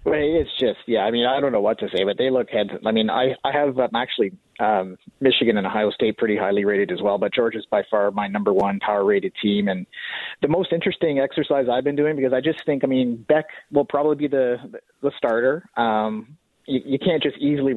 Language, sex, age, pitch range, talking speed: English, male, 30-49, 110-145 Hz, 240 wpm